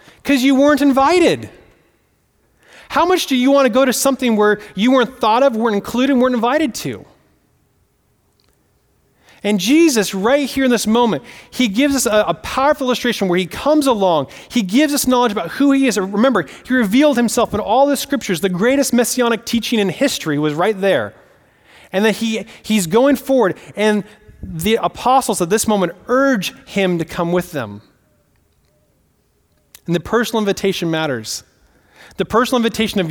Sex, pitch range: male, 175-245 Hz